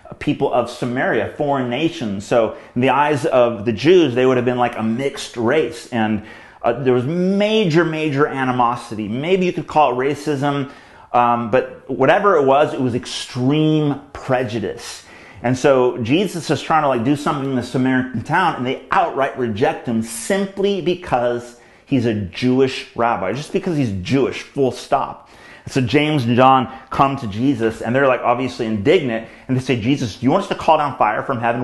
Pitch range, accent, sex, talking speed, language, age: 115-145 Hz, American, male, 185 wpm, English, 30-49